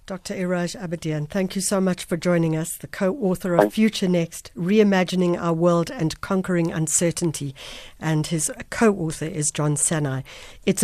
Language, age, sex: English, 60-79, female